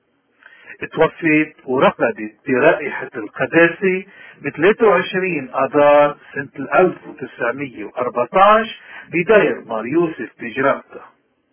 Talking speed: 60 wpm